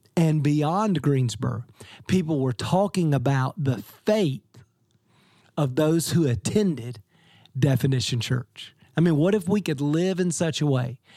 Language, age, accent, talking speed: English, 40-59, American, 140 wpm